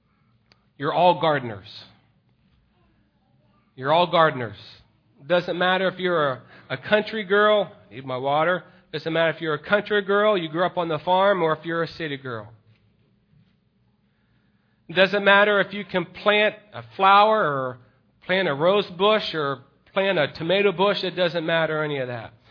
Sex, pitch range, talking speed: male, 135-185 Hz, 170 wpm